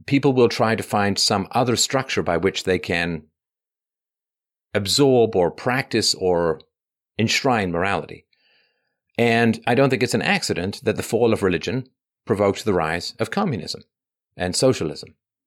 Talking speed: 145 wpm